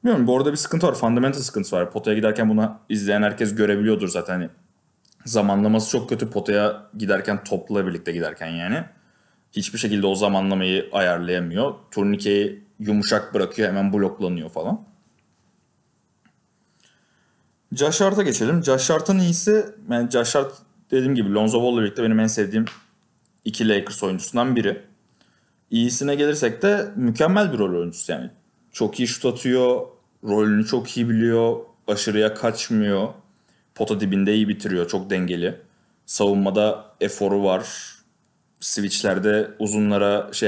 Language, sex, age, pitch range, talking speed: Turkish, male, 30-49, 105-130 Hz, 125 wpm